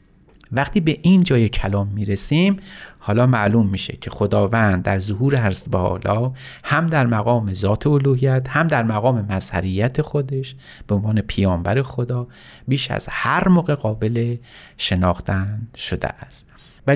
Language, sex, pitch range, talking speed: Persian, male, 105-140 Hz, 140 wpm